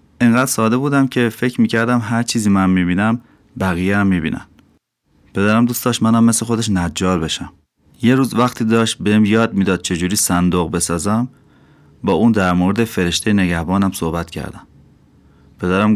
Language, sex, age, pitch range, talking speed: Persian, male, 30-49, 90-115 Hz, 145 wpm